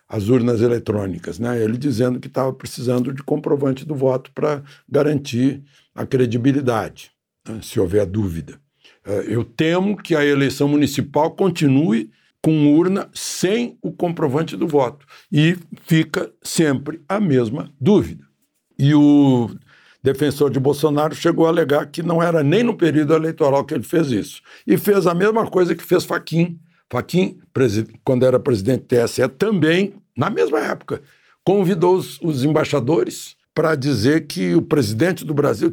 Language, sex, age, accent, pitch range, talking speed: Portuguese, male, 60-79, Brazilian, 125-160 Hz, 150 wpm